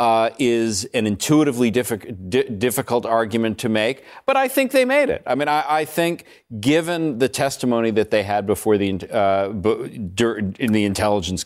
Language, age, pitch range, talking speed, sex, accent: English, 40-59, 100-130 Hz, 170 wpm, male, American